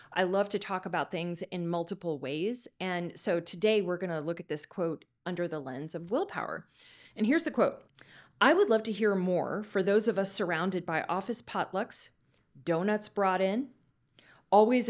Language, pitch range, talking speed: English, 165-210 Hz, 185 wpm